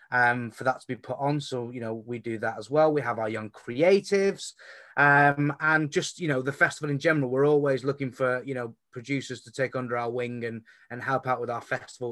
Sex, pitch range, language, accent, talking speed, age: male, 125-160 Hz, English, British, 240 wpm, 20-39